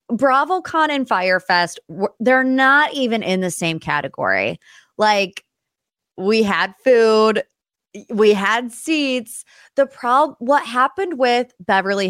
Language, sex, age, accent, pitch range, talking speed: English, female, 20-39, American, 170-235 Hz, 120 wpm